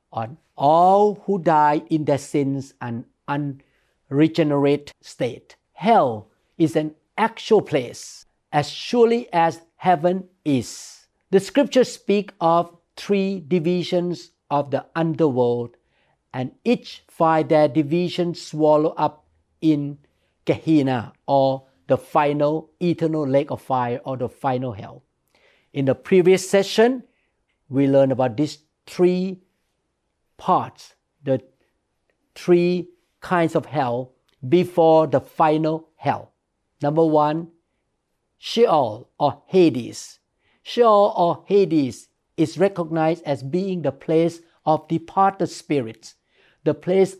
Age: 50-69